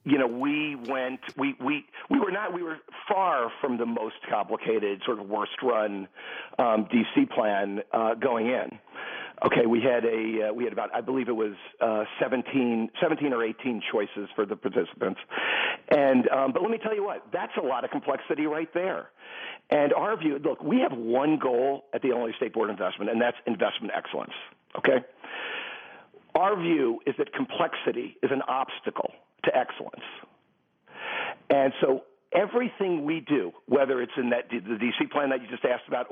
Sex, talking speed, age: male, 185 wpm, 40-59